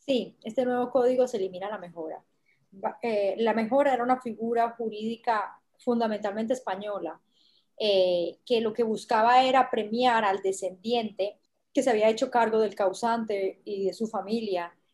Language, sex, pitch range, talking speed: Spanish, female, 185-225 Hz, 150 wpm